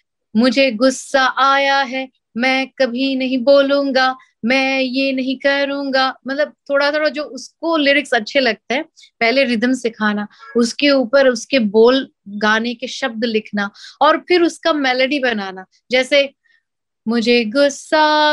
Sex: female